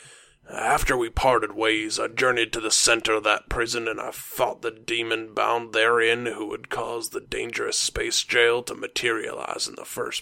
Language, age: English, 30-49